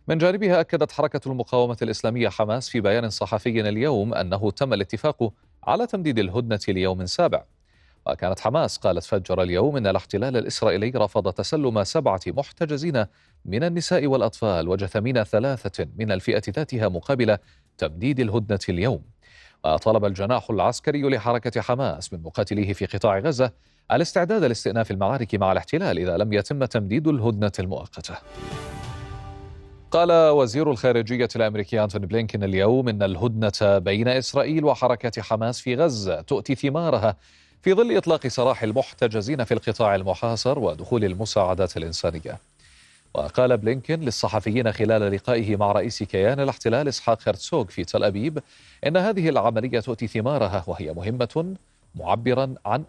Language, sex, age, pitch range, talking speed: Arabic, male, 40-59, 100-135 Hz, 130 wpm